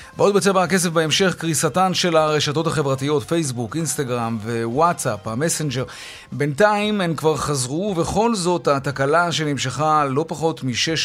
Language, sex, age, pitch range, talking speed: Hebrew, male, 30-49, 125-170 Hz, 125 wpm